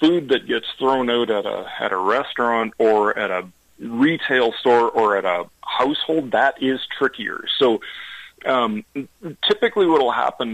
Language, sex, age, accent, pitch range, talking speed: English, male, 40-59, American, 105-135 Hz, 160 wpm